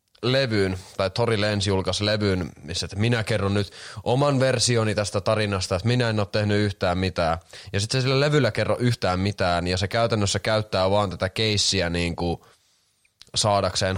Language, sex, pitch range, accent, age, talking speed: Finnish, male, 95-110 Hz, native, 20-39, 165 wpm